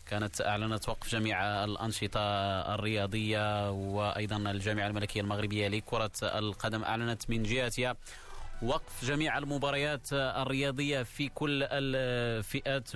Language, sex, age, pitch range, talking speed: Arabic, male, 30-49, 110-130 Hz, 100 wpm